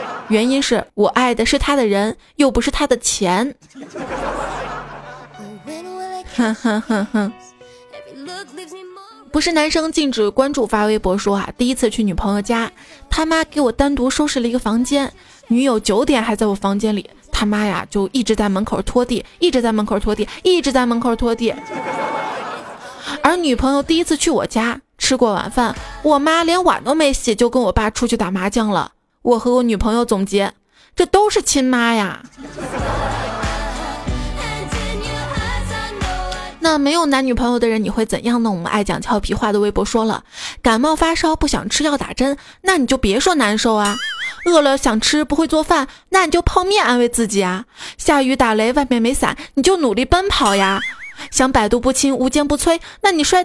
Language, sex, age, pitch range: Chinese, female, 20-39, 220-295 Hz